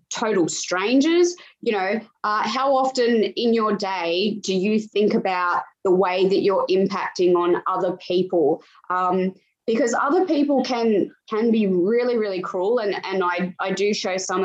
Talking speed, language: 160 wpm, English